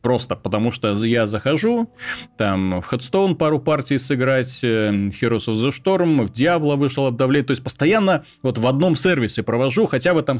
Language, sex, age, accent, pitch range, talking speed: Russian, male, 30-49, native, 110-140 Hz, 175 wpm